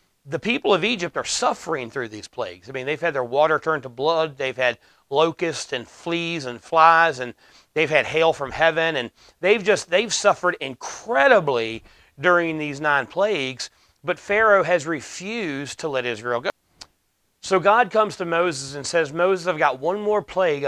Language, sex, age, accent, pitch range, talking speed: English, male, 30-49, American, 130-175 Hz, 180 wpm